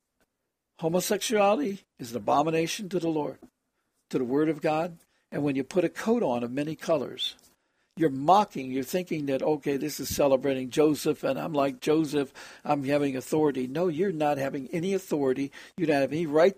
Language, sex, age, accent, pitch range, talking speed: English, male, 60-79, American, 145-185 Hz, 180 wpm